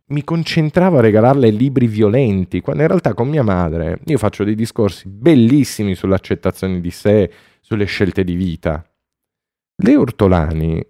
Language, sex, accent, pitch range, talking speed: Italian, male, native, 95-160 Hz, 145 wpm